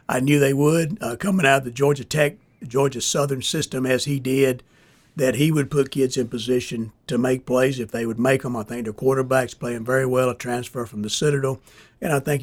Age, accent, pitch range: 60-79, American, 120-140 Hz